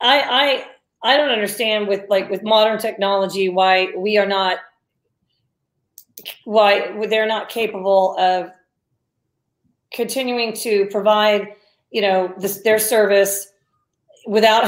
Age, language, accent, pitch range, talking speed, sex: 40-59, English, American, 200-250 Hz, 115 wpm, female